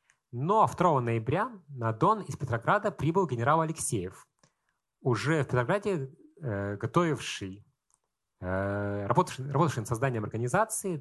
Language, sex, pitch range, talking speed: Russian, male, 115-170 Hz, 105 wpm